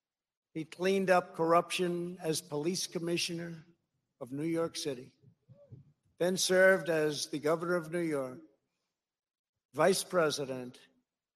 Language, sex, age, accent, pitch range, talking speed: English, male, 60-79, American, 145-175 Hz, 110 wpm